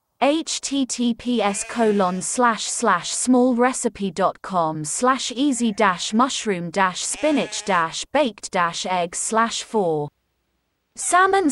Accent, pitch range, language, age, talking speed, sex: British, 195-270 Hz, English, 30-49, 110 wpm, female